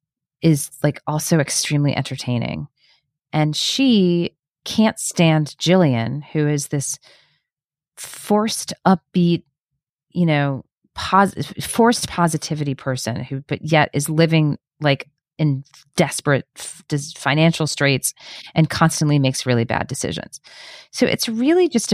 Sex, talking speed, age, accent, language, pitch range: female, 115 wpm, 30-49, American, English, 140-175 Hz